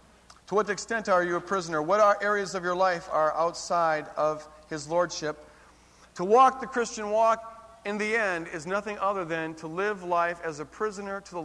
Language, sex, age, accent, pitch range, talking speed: English, male, 50-69, American, 130-205 Hz, 200 wpm